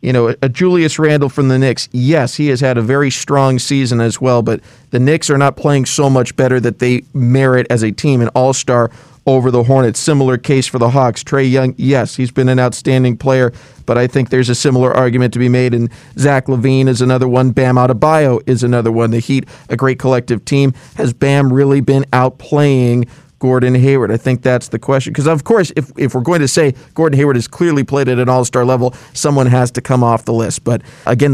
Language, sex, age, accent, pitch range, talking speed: English, male, 40-59, American, 125-140 Hz, 225 wpm